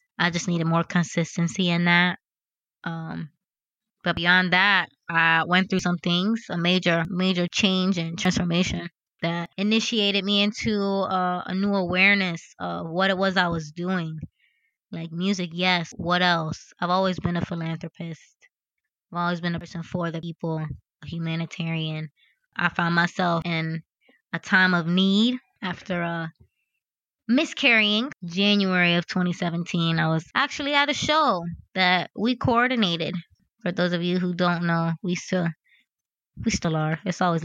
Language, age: English, 20-39